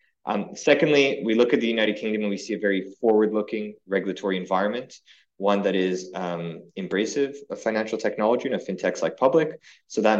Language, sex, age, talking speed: English, male, 20-39, 175 wpm